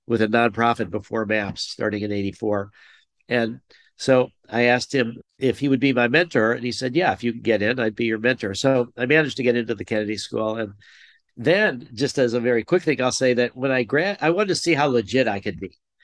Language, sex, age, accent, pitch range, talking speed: English, male, 50-69, American, 115-140 Hz, 240 wpm